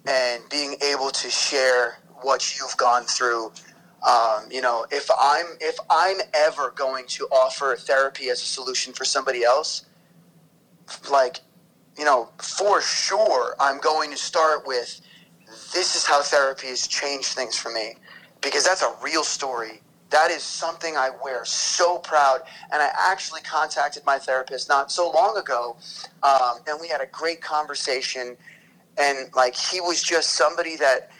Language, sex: English, male